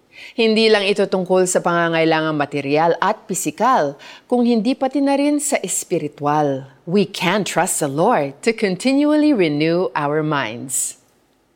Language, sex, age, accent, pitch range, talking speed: Filipino, female, 40-59, native, 155-245 Hz, 135 wpm